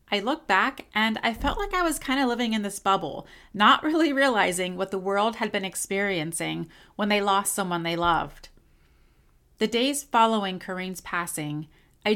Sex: female